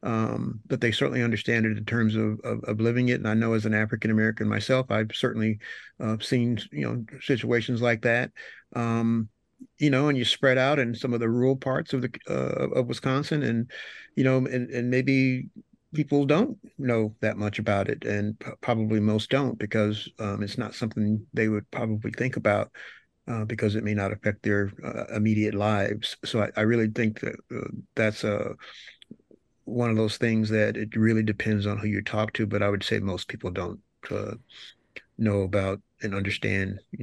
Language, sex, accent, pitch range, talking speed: English, male, American, 105-120 Hz, 195 wpm